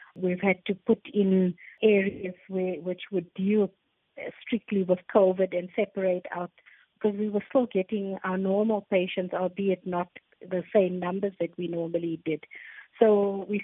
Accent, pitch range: Indian, 180-210 Hz